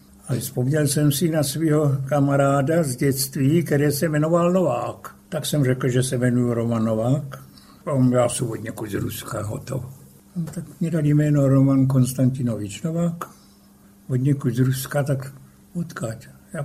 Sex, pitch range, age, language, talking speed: male, 125-145 Hz, 60-79, Czech, 150 wpm